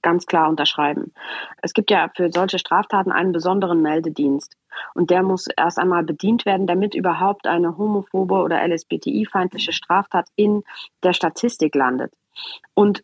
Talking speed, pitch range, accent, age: 145 wpm, 175-205 Hz, German, 40-59